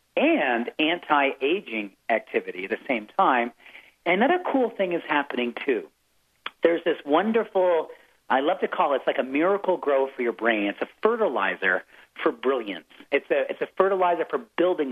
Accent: American